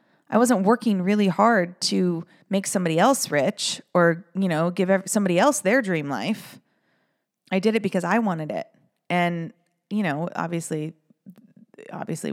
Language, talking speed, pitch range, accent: English, 150 wpm, 155-195 Hz, American